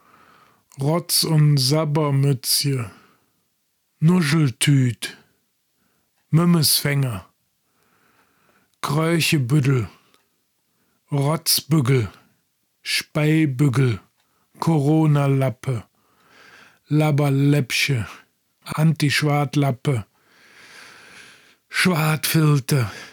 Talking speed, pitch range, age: 30 wpm, 140-165 Hz, 50-69